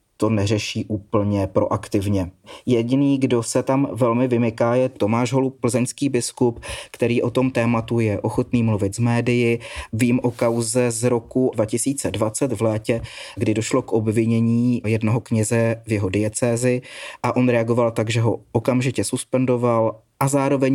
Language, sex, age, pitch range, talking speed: Czech, male, 30-49, 110-125 Hz, 150 wpm